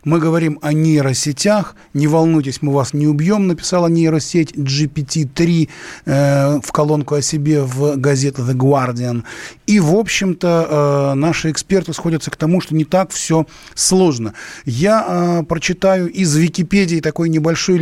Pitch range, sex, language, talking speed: 140-175 Hz, male, Russian, 145 wpm